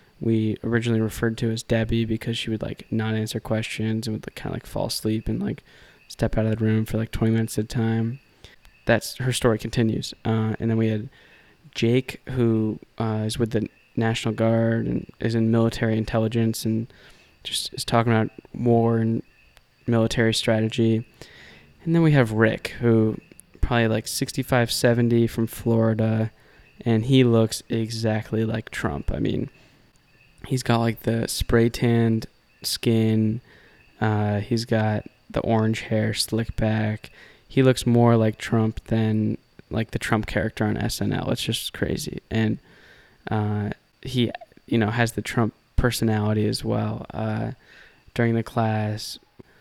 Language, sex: English, male